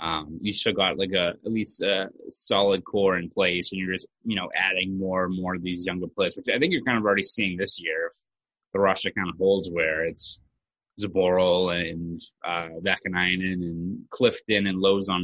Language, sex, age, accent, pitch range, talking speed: English, male, 20-39, American, 90-100 Hz, 205 wpm